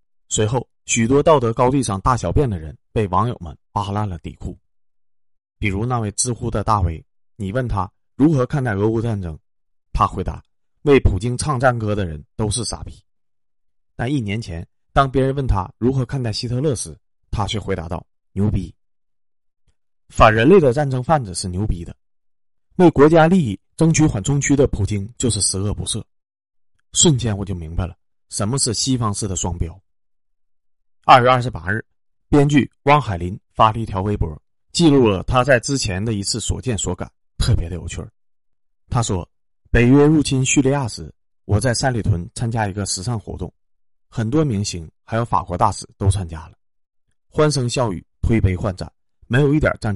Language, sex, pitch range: Chinese, male, 90-125 Hz